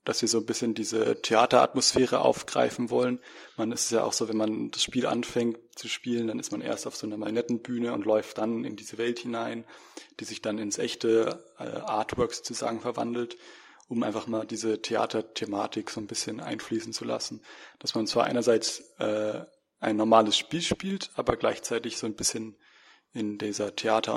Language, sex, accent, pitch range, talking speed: German, male, German, 110-120 Hz, 180 wpm